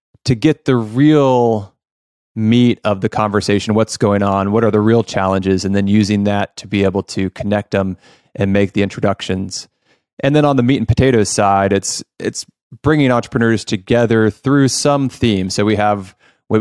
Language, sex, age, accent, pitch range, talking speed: English, male, 20-39, American, 100-120 Hz, 180 wpm